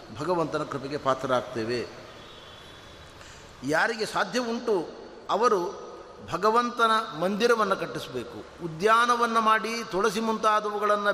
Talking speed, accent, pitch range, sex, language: 70 wpm, native, 160-215 Hz, male, Kannada